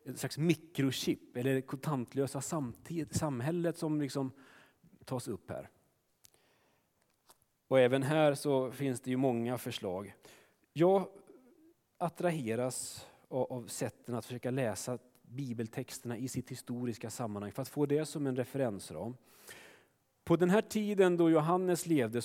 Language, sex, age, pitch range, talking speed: Swedish, male, 30-49, 120-160 Hz, 130 wpm